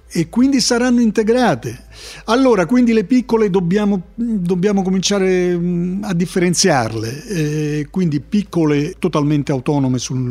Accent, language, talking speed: native, Italian, 105 wpm